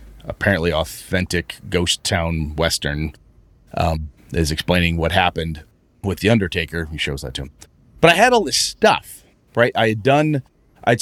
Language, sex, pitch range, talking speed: English, male, 85-120 Hz, 160 wpm